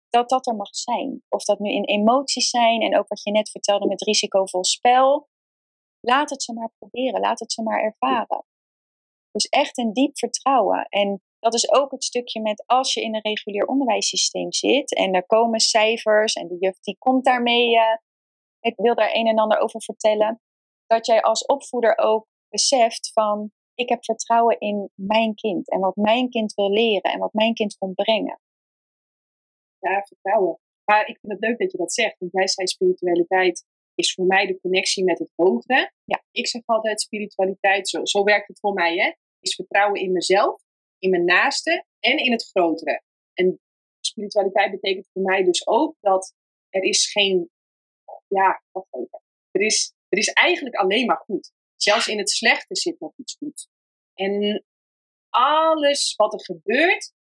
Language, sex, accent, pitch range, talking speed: Dutch, female, Dutch, 195-245 Hz, 180 wpm